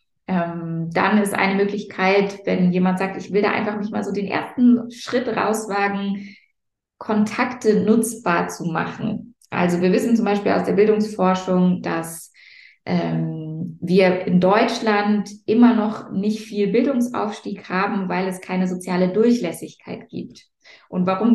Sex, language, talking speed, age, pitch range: female, German, 140 wpm, 20-39, 185-220 Hz